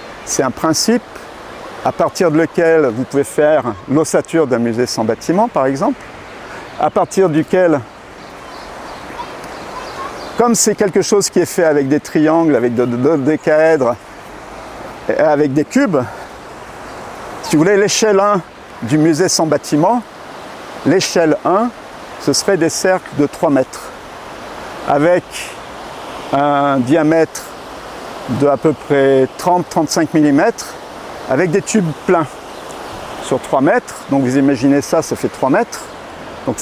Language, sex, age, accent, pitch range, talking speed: French, male, 50-69, French, 140-185 Hz, 135 wpm